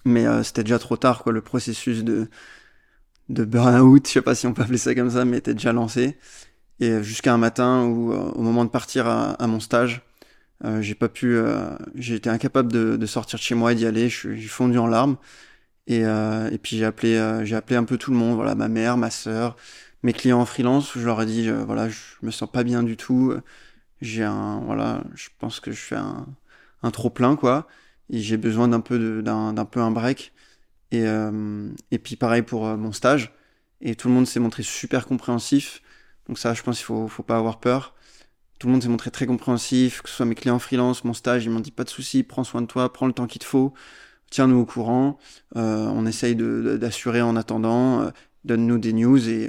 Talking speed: 240 wpm